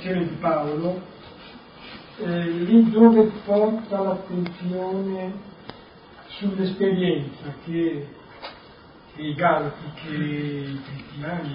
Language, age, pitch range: Italian, 40-59, 165-205 Hz